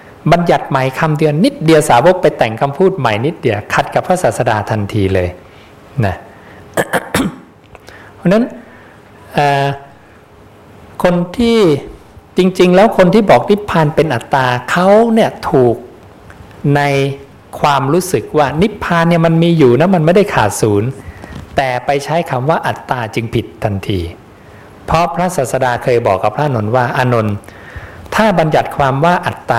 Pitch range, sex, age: 105-165 Hz, male, 60-79